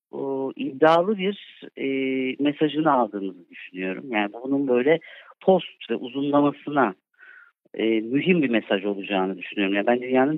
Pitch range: 115-160 Hz